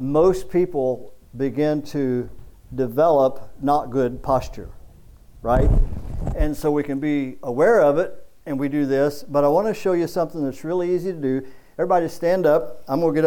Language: English